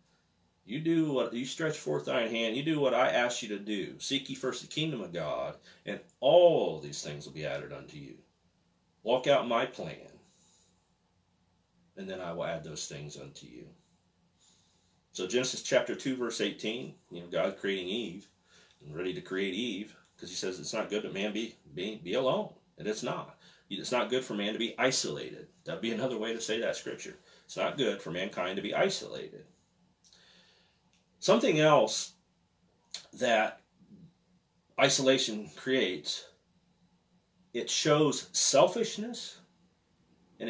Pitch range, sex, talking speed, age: 105-155 Hz, male, 160 wpm, 40-59